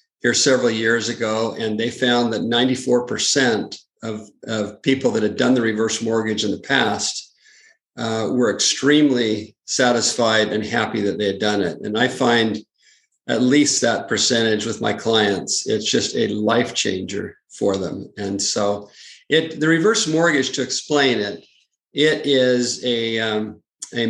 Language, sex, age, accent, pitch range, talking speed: English, male, 50-69, American, 110-130 Hz, 155 wpm